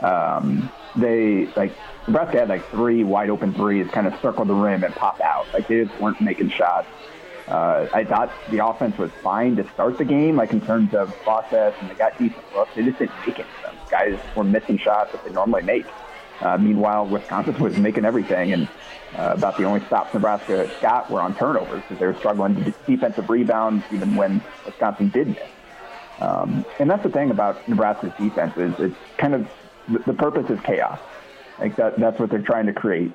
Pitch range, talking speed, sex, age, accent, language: 105-120 Hz, 205 wpm, male, 30-49, American, English